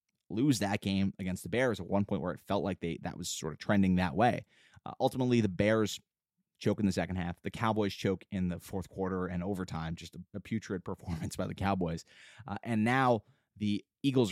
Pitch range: 95-115 Hz